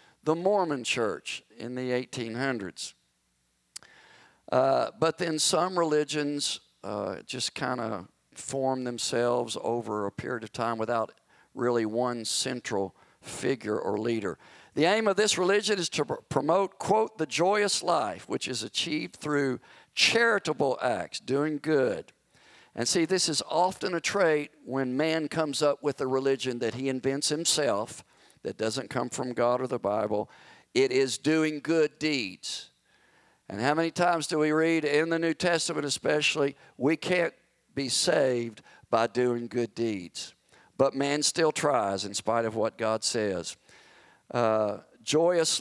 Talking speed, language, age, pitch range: 145 wpm, English, 50-69, 120-160 Hz